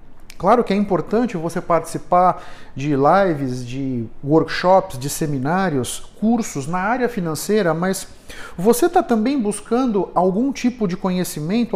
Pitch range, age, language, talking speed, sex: 155-210 Hz, 50-69, Portuguese, 130 wpm, male